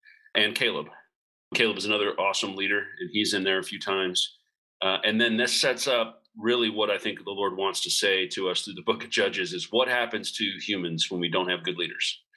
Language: English